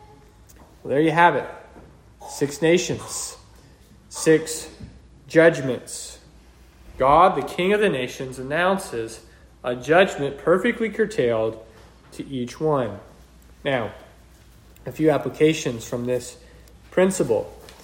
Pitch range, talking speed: 135-185 Hz, 100 wpm